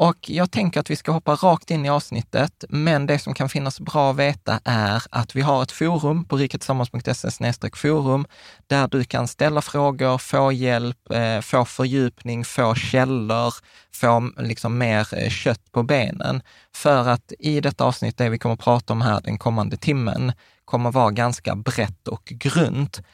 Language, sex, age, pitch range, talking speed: Swedish, male, 20-39, 110-140 Hz, 175 wpm